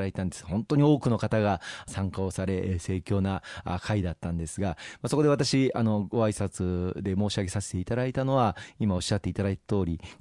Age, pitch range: 40-59, 100-130 Hz